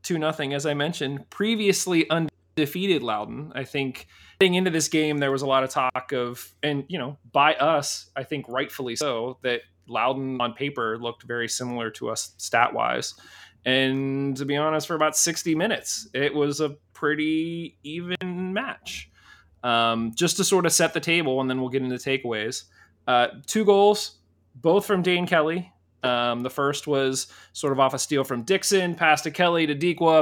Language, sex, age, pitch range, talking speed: English, male, 30-49, 130-160 Hz, 185 wpm